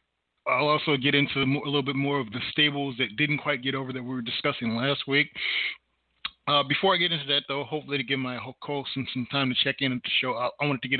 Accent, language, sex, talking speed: American, English, male, 265 wpm